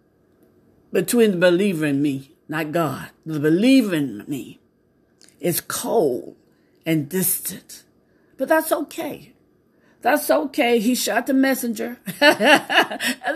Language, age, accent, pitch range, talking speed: English, 50-69, American, 205-280 Hz, 110 wpm